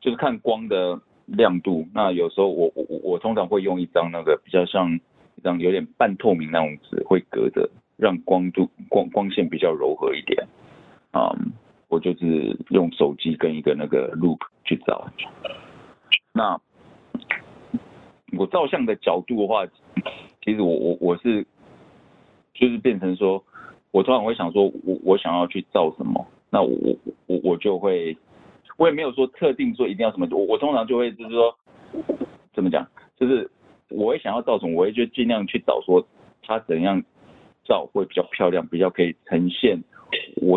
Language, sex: Chinese, male